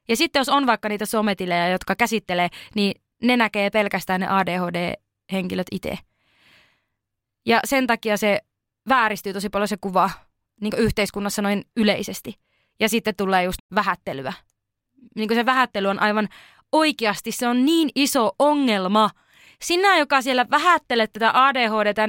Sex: female